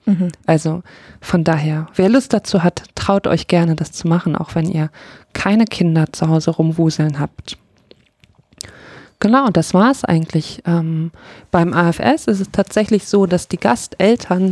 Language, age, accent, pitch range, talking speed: German, 20-39, German, 165-195 Hz, 155 wpm